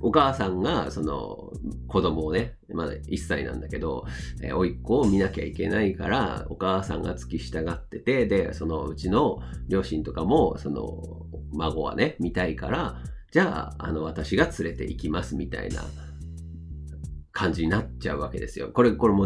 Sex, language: male, Japanese